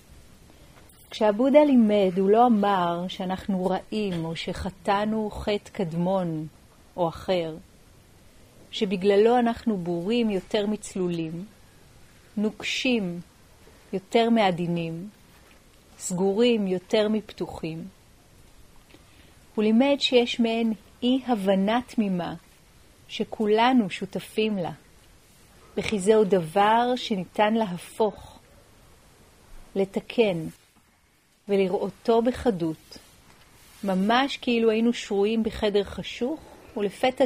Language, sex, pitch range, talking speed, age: Hebrew, female, 180-225 Hz, 80 wpm, 40-59